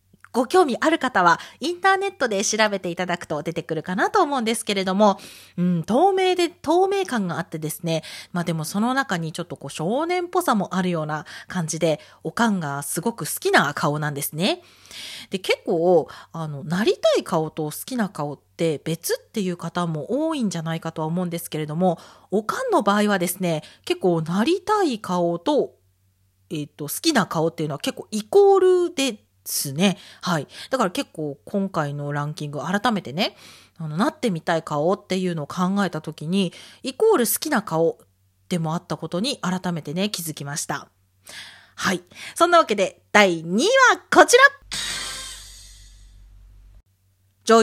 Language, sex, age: Japanese, female, 40-59